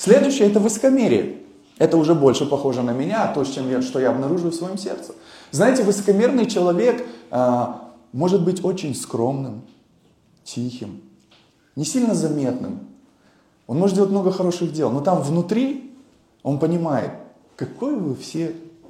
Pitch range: 155-225 Hz